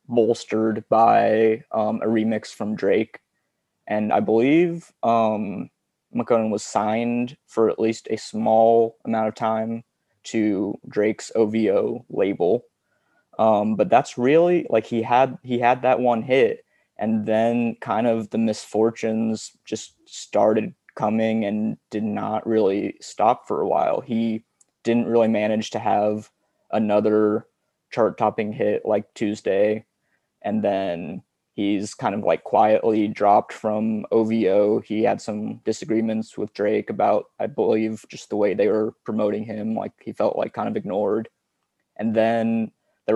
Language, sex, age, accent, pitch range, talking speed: English, male, 20-39, American, 110-115 Hz, 140 wpm